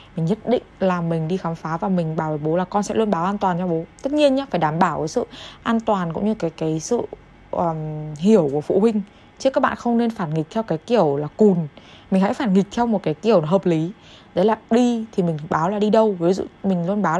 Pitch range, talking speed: 165-210 Hz, 270 wpm